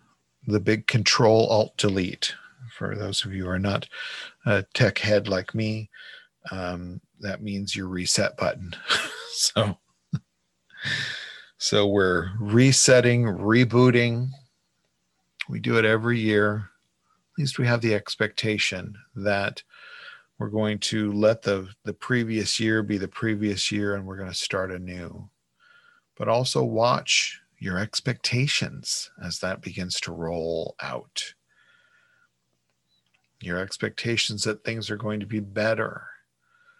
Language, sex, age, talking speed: English, male, 40-59, 125 wpm